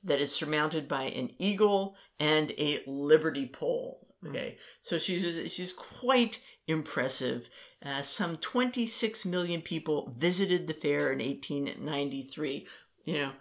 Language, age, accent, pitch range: English, 50-69, American, 150-200 Hz